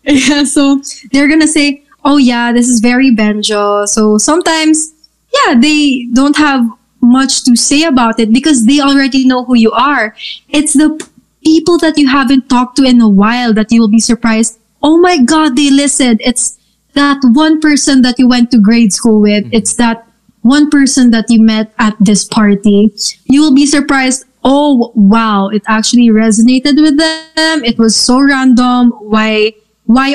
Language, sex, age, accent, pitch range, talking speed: English, female, 20-39, Filipino, 220-280 Hz, 175 wpm